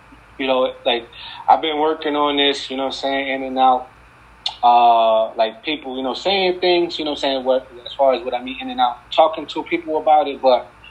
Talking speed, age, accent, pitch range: 240 wpm, 20-39, American, 110-140 Hz